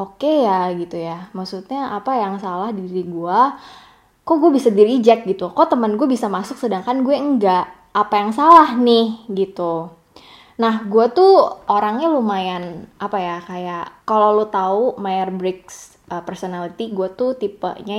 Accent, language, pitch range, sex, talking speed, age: native, Indonesian, 180-235 Hz, female, 155 wpm, 20-39